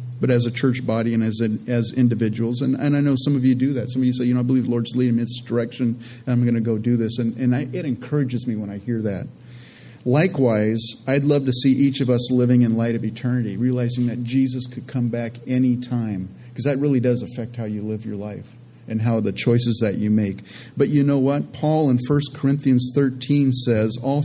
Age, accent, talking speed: 40-59, American, 245 wpm